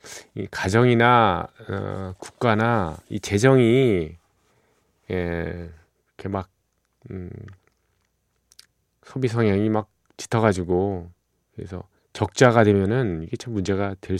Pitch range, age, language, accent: 90-120 Hz, 40-59, Korean, native